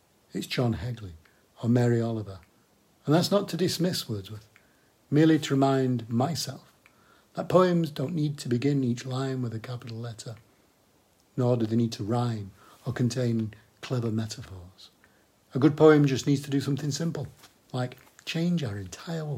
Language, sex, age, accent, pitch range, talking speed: English, male, 50-69, British, 100-130 Hz, 160 wpm